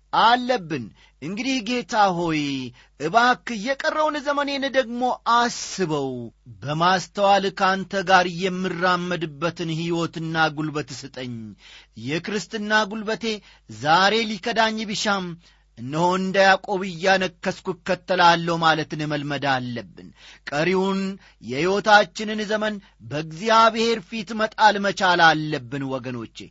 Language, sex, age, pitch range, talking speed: Amharic, male, 40-59, 155-225 Hz, 80 wpm